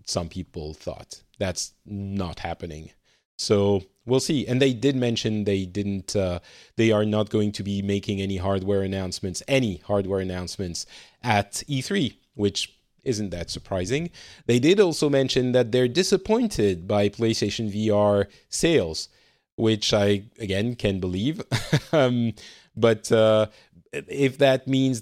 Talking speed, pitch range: 135 wpm, 100-125 Hz